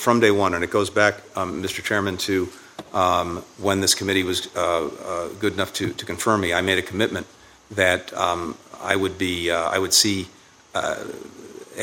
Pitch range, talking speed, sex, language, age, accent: 95-110 Hz, 195 wpm, male, English, 50-69, American